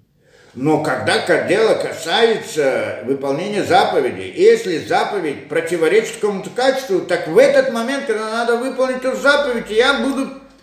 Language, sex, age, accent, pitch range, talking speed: Russian, male, 50-69, native, 195-275 Hz, 125 wpm